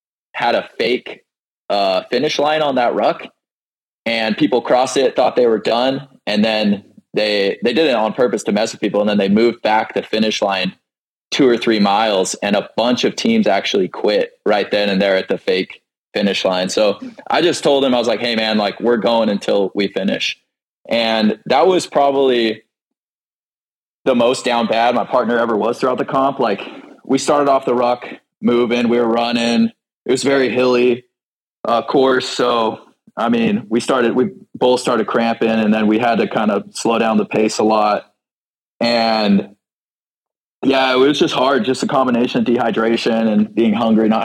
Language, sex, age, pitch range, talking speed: English, male, 20-39, 110-130 Hz, 190 wpm